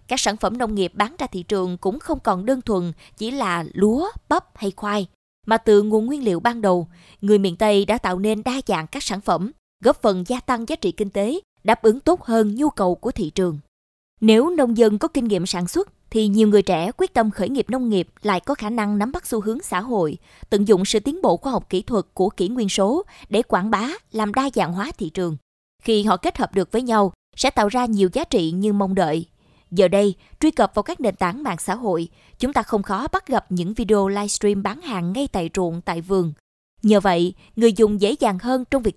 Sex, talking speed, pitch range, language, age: female, 240 wpm, 190-245 Hz, Vietnamese, 20-39